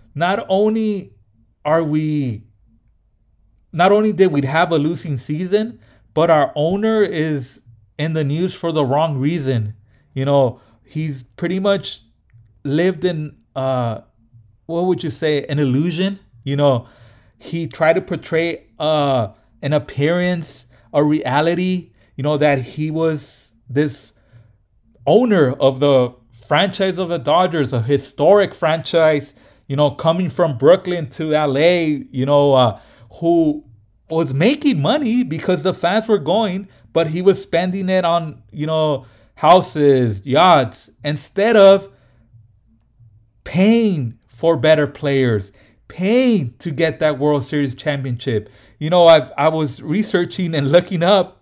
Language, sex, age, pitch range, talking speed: English, male, 30-49, 120-175 Hz, 135 wpm